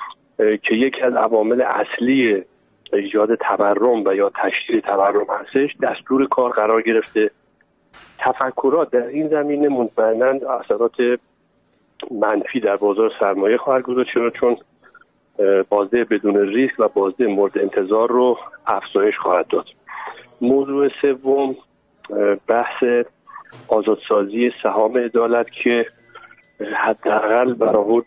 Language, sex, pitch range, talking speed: Persian, male, 105-135 Hz, 110 wpm